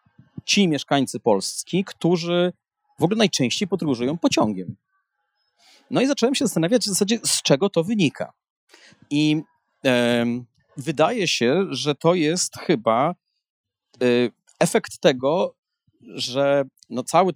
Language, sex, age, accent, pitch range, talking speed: Polish, male, 30-49, native, 125-160 Hz, 105 wpm